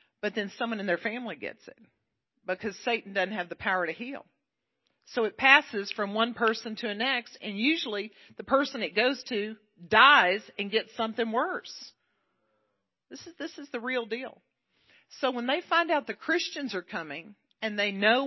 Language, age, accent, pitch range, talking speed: English, 50-69, American, 195-255 Hz, 185 wpm